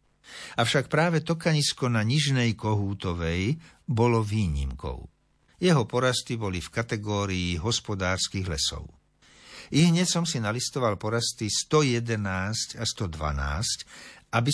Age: 60-79